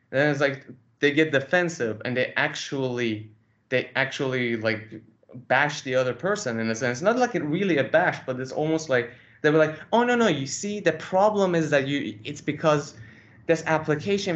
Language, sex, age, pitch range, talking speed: English, male, 20-39, 120-160 Hz, 195 wpm